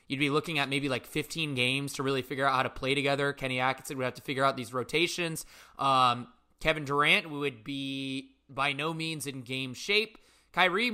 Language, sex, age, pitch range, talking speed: English, male, 20-39, 135-165 Hz, 205 wpm